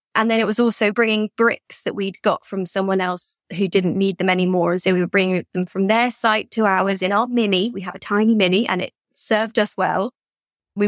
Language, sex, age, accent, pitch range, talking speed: English, female, 20-39, British, 185-215 Hz, 235 wpm